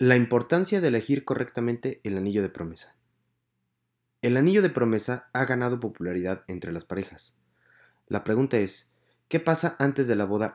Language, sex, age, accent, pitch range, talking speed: Spanish, male, 30-49, Mexican, 95-120 Hz, 160 wpm